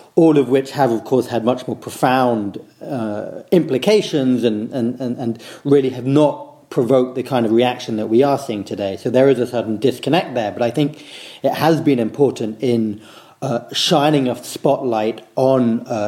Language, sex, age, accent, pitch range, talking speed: English, male, 40-59, British, 115-140 Hz, 180 wpm